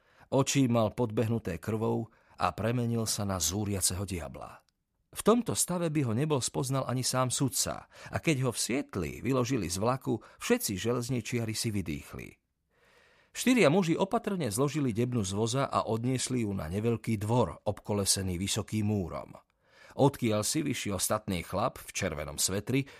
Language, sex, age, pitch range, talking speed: Slovak, male, 40-59, 100-135 Hz, 145 wpm